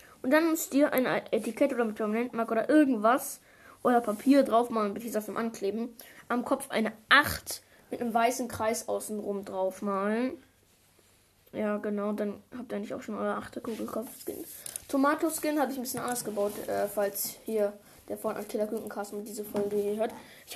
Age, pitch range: 20-39, 215-260 Hz